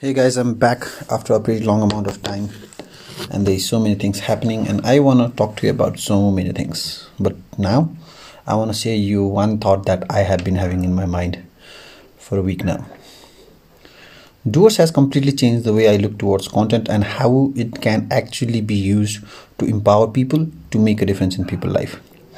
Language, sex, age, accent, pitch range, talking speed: English, male, 30-49, Indian, 95-125 Hz, 205 wpm